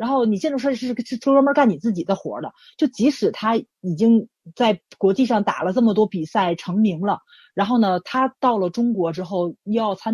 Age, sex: 30-49, female